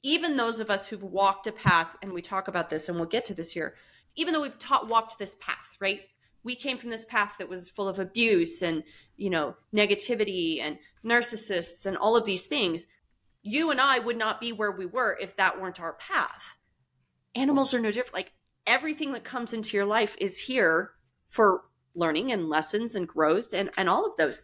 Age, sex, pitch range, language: 30-49, female, 180-230 Hz, English